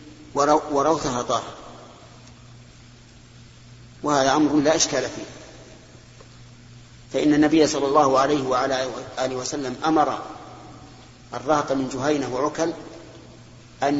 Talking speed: 90 wpm